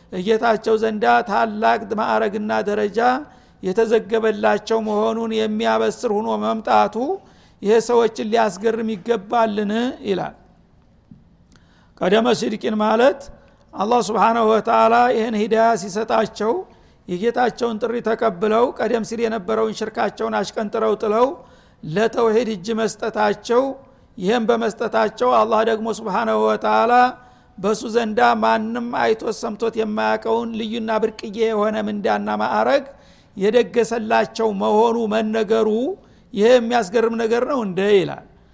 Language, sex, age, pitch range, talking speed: Amharic, male, 60-79, 215-235 Hz, 75 wpm